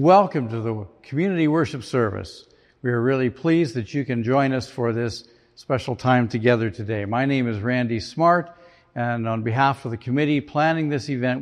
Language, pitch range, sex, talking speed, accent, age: English, 115-150 Hz, male, 185 wpm, American, 60-79